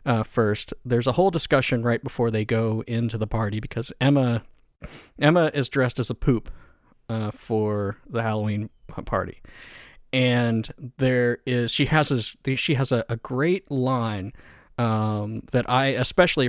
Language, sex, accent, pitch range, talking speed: English, male, American, 110-135 Hz, 150 wpm